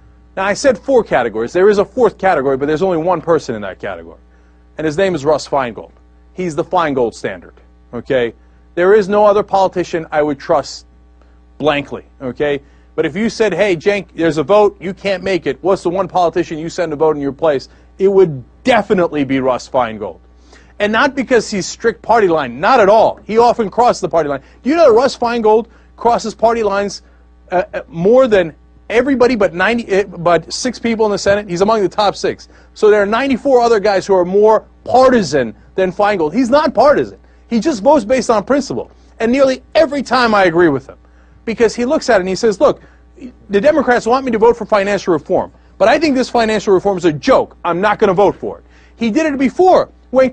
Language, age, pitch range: English, 40-59, 170-255 Hz